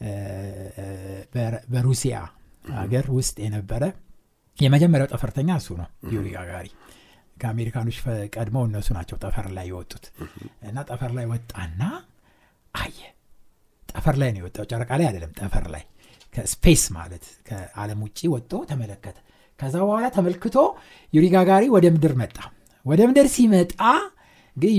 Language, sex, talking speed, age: Amharic, male, 105 wpm, 60-79